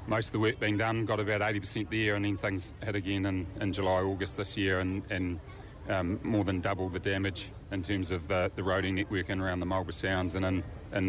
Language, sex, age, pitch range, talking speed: English, male, 30-49, 95-105 Hz, 240 wpm